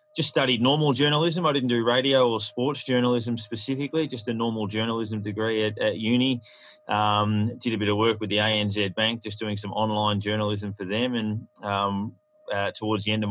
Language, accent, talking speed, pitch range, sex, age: English, Australian, 200 wpm, 105-120 Hz, male, 20-39